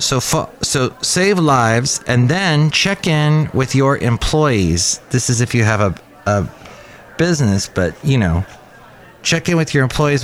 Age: 30-49